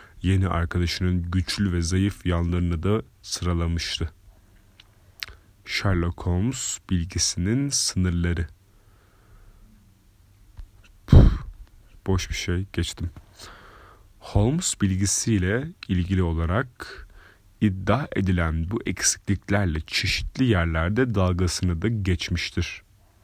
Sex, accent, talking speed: male, native, 75 wpm